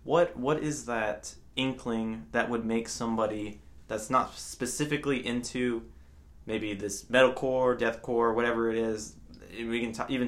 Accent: American